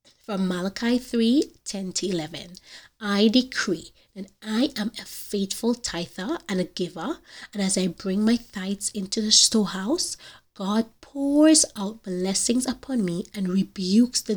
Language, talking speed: English, 145 wpm